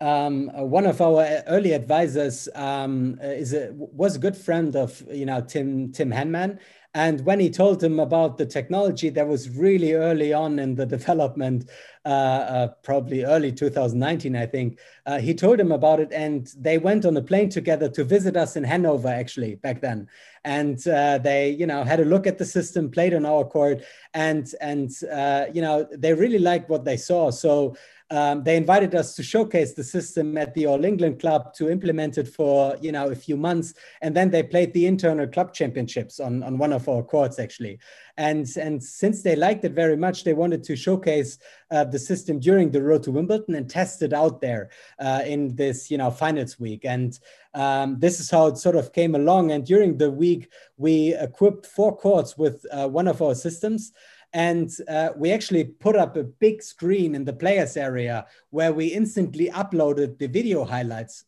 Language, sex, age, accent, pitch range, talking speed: English, male, 30-49, German, 140-175 Hz, 200 wpm